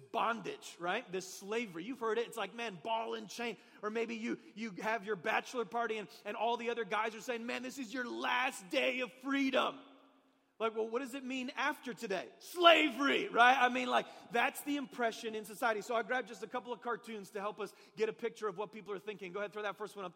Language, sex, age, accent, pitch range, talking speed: English, male, 30-49, American, 210-245 Hz, 240 wpm